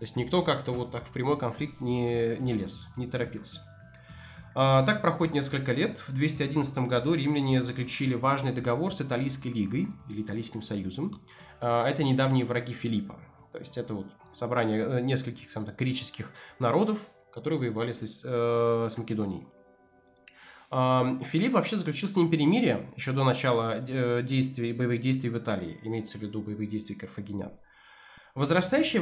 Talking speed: 155 wpm